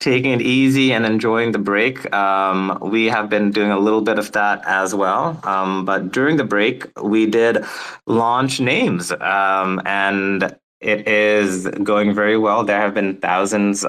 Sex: male